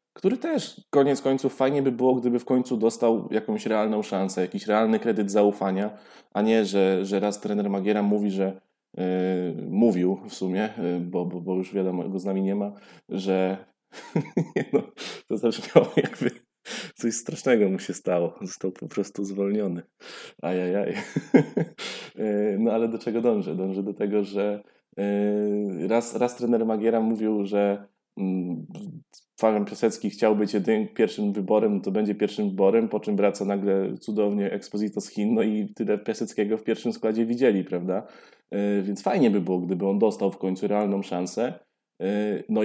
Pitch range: 95-115 Hz